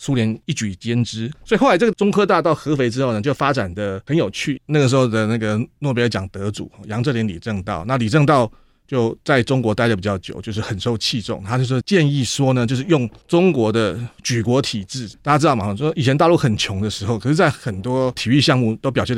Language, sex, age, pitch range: Chinese, male, 30-49, 110-140 Hz